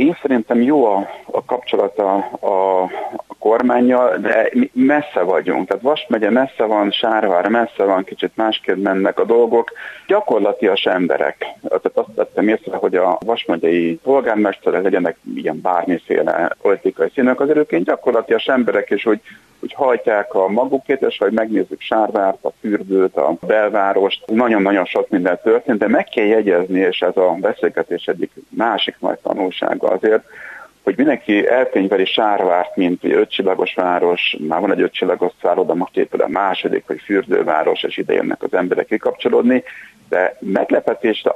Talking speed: 140 wpm